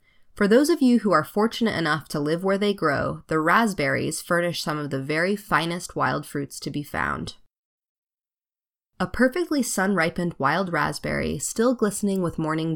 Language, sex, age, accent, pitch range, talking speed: English, female, 20-39, American, 150-205 Hz, 165 wpm